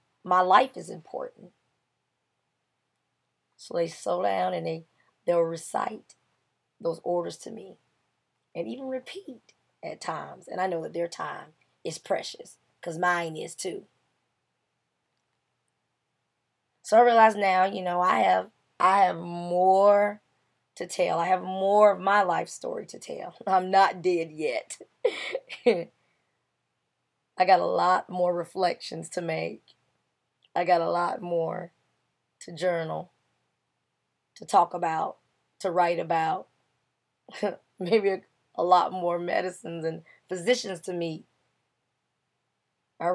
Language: English